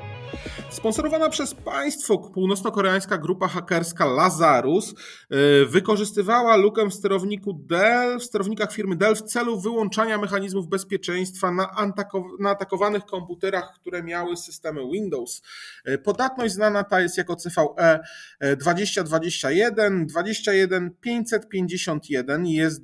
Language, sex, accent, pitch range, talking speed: Polish, male, native, 155-200 Hz, 100 wpm